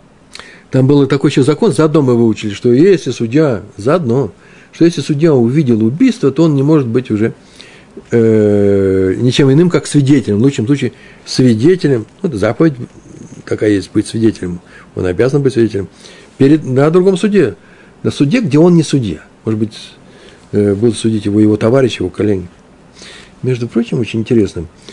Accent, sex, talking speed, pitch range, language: native, male, 160 wpm, 110-175 Hz, Russian